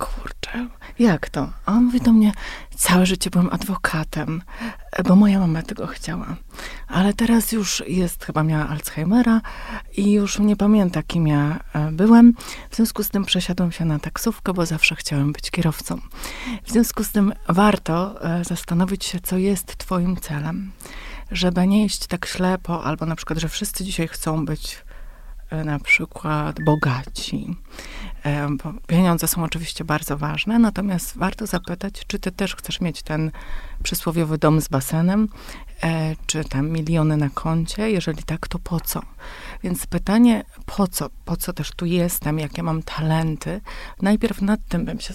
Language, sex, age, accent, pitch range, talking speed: Polish, female, 30-49, native, 160-195 Hz, 155 wpm